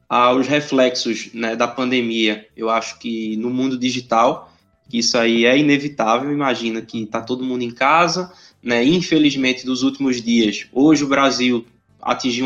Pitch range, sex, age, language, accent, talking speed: 120-150 Hz, male, 20-39, Portuguese, Brazilian, 150 wpm